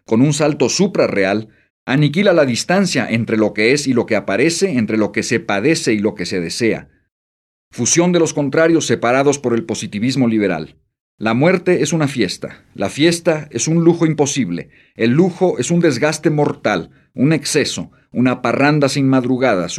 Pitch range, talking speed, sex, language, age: 115-150 Hz, 175 wpm, male, Spanish, 50-69